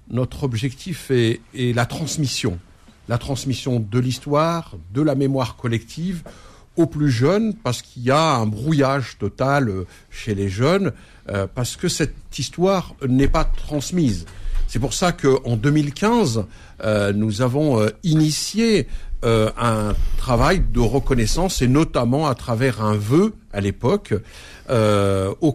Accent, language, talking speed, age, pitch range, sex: French, French, 140 wpm, 60-79, 110-150 Hz, male